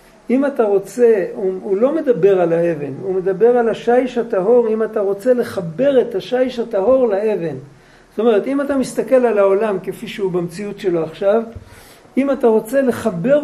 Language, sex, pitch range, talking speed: Hebrew, male, 180-240 Hz, 170 wpm